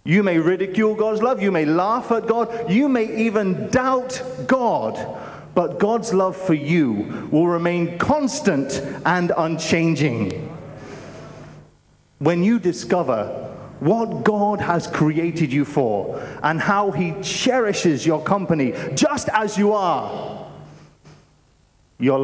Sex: male